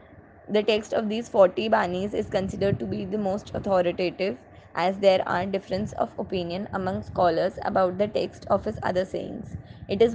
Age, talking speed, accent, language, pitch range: 20-39, 175 wpm, Indian, English, 185-210 Hz